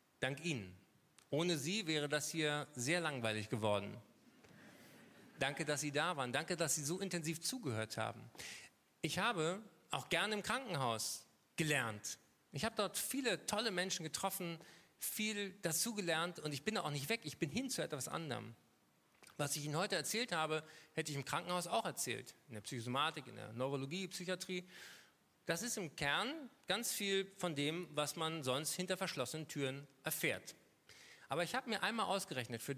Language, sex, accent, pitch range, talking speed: German, male, German, 135-180 Hz, 165 wpm